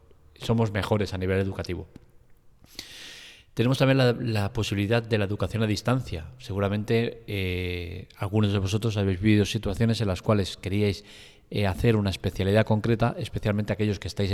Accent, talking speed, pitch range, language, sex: Spanish, 150 wpm, 100-115 Hz, Spanish, male